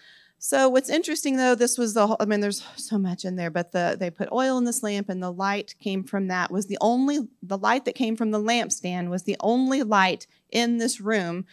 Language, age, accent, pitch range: English, 40-59, American, 195-235 Hz